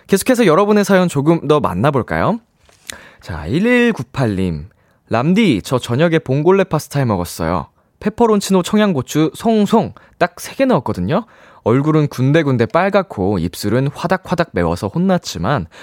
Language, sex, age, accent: Korean, male, 20-39, native